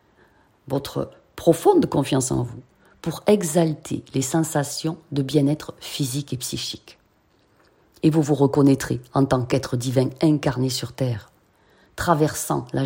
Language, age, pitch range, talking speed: French, 40-59, 135-170 Hz, 125 wpm